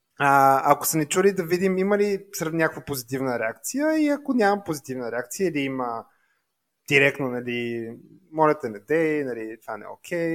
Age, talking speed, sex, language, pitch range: 30-49, 175 wpm, male, Bulgarian, 125-165 Hz